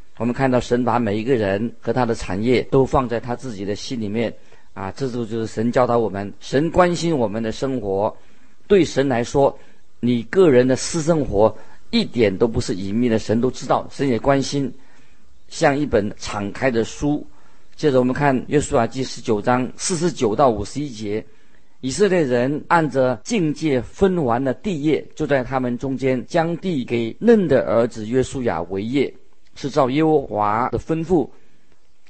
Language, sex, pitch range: Chinese, male, 115-150 Hz